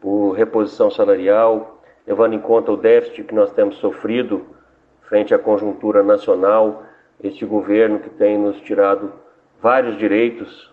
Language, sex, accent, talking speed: Portuguese, male, Brazilian, 135 wpm